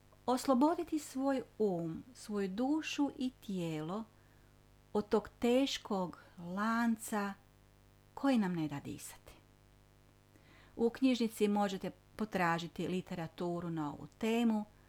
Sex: female